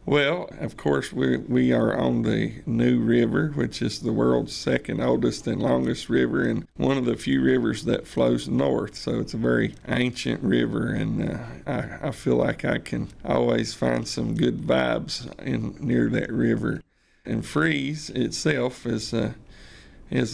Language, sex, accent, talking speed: English, male, American, 165 wpm